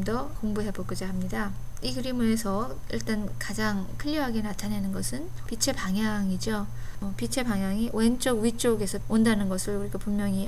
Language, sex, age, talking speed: English, female, 20-39, 115 wpm